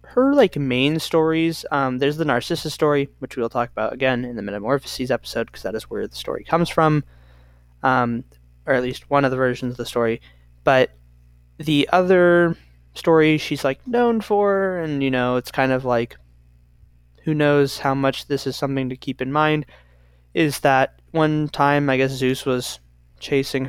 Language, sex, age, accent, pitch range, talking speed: English, male, 20-39, American, 120-145 Hz, 180 wpm